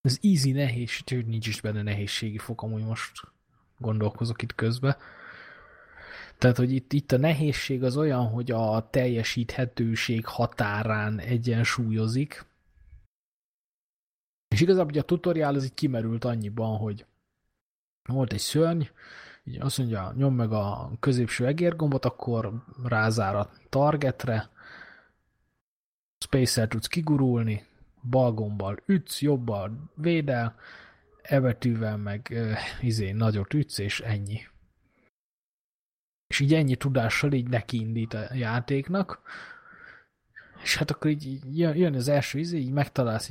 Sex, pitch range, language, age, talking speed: male, 110-140 Hz, Hungarian, 20-39, 120 wpm